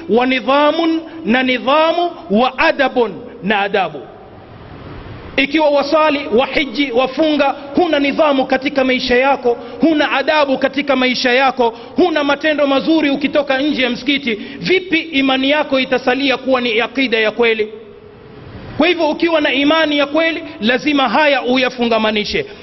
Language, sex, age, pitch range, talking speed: Swahili, male, 40-59, 225-285 Hz, 125 wpm